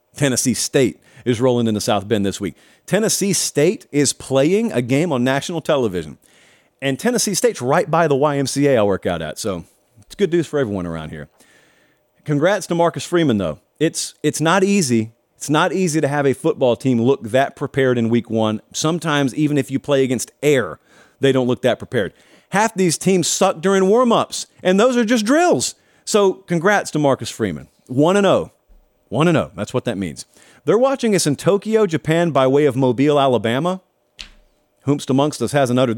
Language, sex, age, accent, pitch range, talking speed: English, male, 40-59, American, 125-185 Hz, 195 wpm